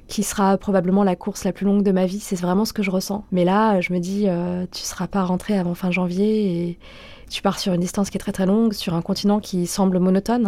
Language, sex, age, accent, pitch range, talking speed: French, female, 20-39, French, 175-200 Hz, 275 wpm